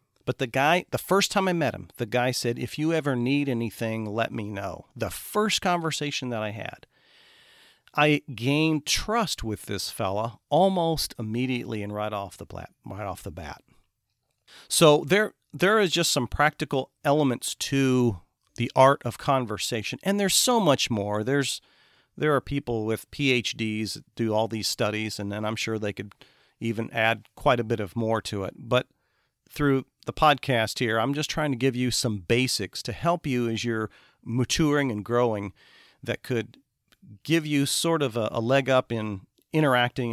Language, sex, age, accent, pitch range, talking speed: English, male, 40-59, American, 110-145 Hz, 180 wpm